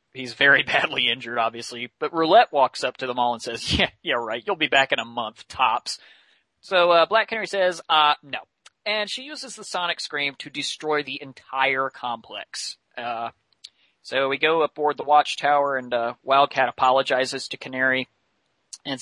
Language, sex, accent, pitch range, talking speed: English, male, American, 120-145 Hz, 175 wpm